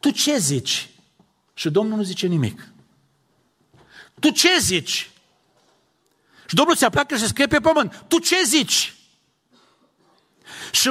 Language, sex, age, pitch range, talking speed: Romanian, male, 50-69, 140-215 Hz, 145 wpm